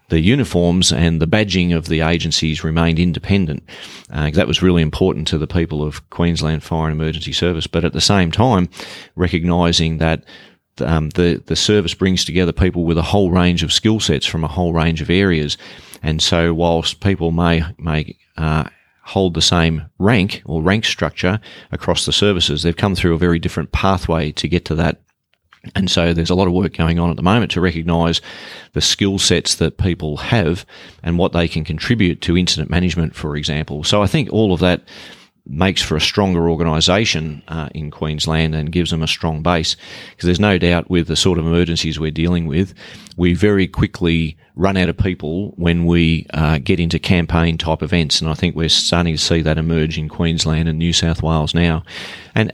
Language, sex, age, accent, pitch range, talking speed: English, male, 30-49, Australian, 80-90 Hz, 195 wpm